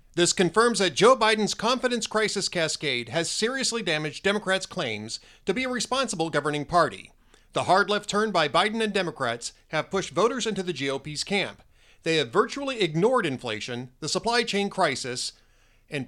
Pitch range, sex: 145-200 Hz, male